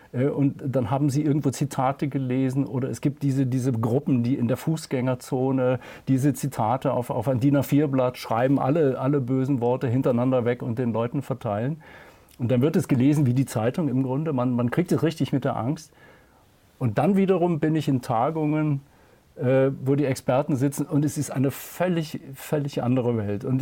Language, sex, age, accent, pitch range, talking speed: German, male, 40-59, German, 125-150 Hz, 185 wpm